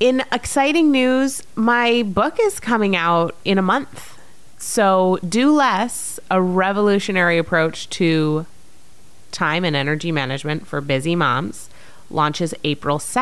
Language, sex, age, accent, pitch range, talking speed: English, female, 30-49, American, 145-195 Hz, 125 wpm